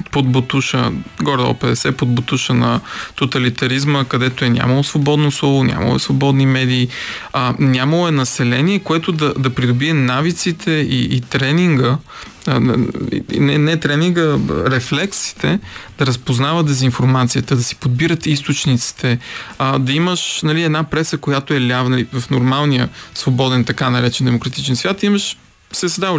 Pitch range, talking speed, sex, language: 125-150 Hz, 140 wpm, male, Bulgarian